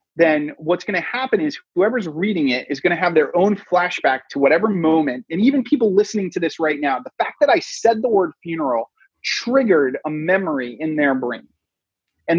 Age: 30-49